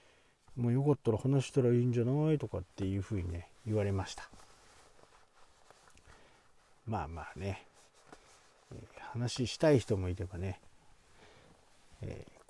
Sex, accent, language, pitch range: male, native, Japanese, 90-115 Hz